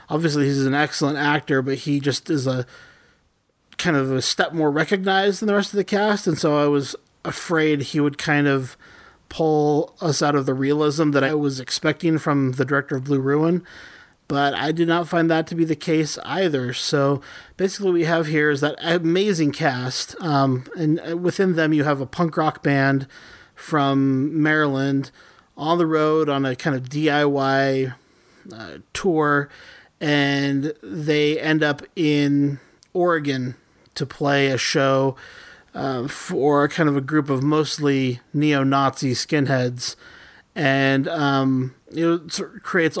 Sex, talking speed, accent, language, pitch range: male, 160 wpm, American, English, 140-160 Hz